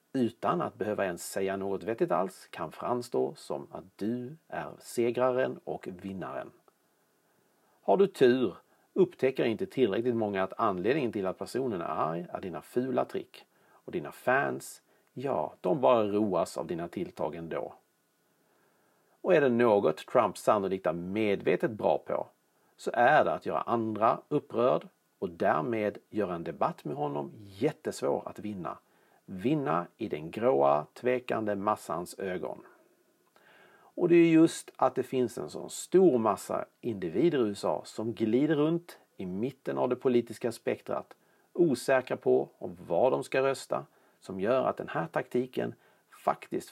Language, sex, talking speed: Swedish, male, 150 wpm